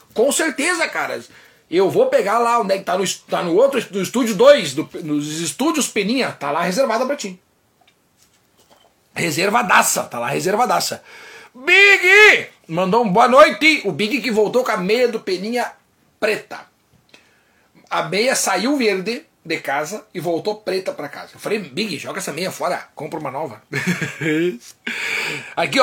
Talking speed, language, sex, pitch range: 165 wpm, Portuguese, male, 200-285 Hz